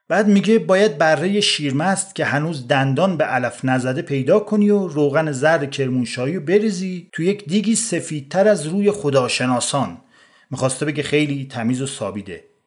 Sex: male